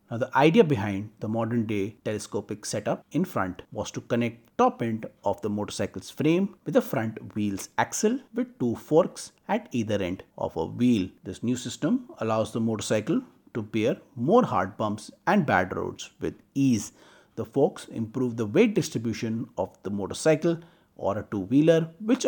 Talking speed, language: 170 wpm, Hindi